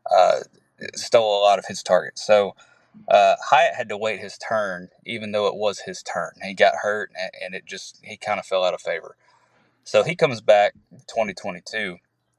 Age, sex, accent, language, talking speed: 20-39, male, American, English, 190 wpm